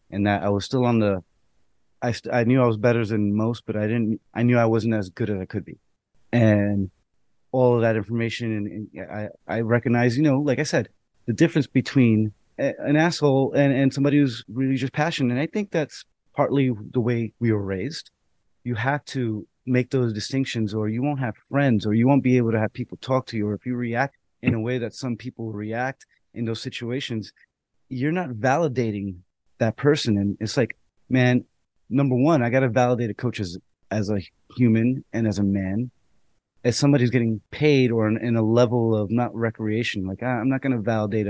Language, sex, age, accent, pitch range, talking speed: English, male, 30-49, American, 110-130 Hz, 215 wpm